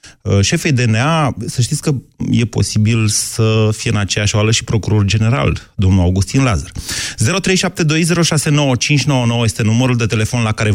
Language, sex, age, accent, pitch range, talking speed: Romanian, male, 30-49, native, 105-130 Hz, 140 wpm